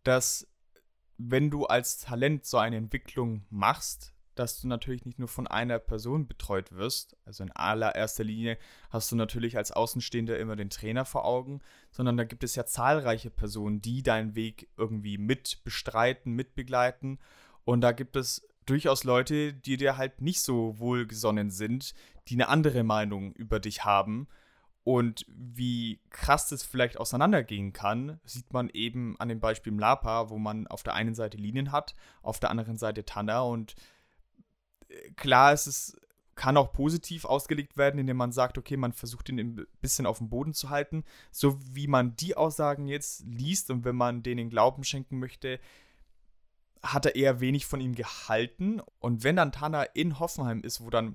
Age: 20-39